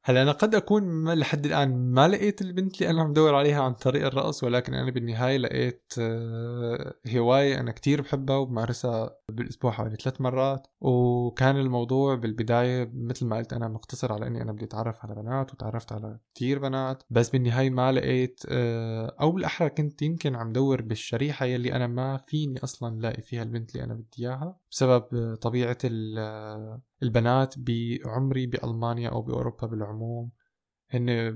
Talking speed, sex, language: 150 wpm, male, German